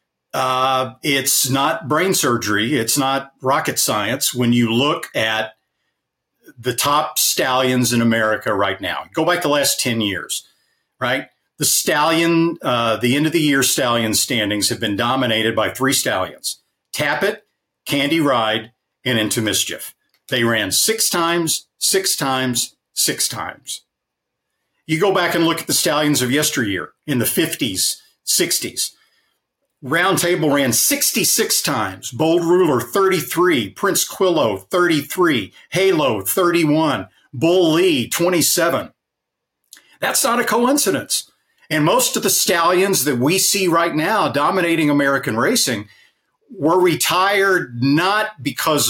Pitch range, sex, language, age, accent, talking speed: 125-180 Hz, male, English, 50-69, American, 130 wpm